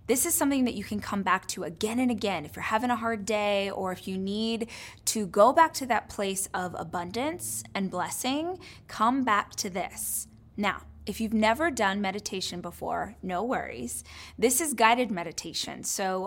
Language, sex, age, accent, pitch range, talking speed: English, female, 20-39, American, 185-240 Hz, 185 wpm